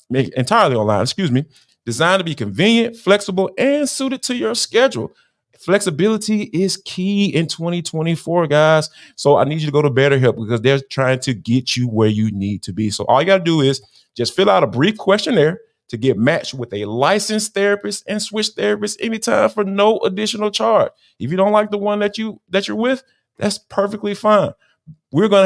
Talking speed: 200 wpm